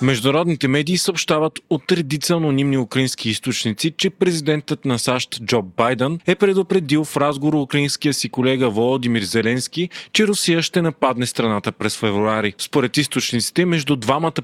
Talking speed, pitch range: 140 wpm, 125-160 Hz